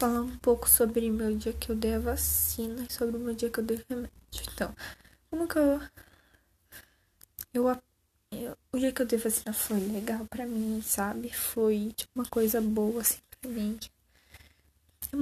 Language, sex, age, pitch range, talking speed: Persian, female, 10-29, 205-235 Hz, 180 wpm